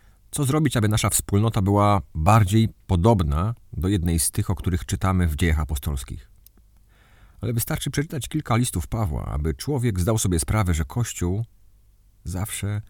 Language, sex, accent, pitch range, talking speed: Polish, male, native, 90-105 Hz, 150 wpm